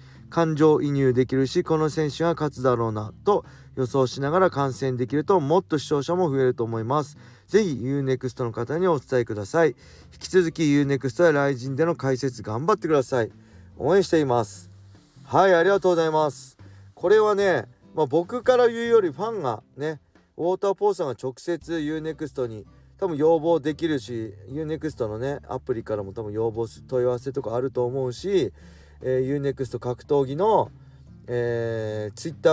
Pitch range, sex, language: 120-160 Hz, male, Japanese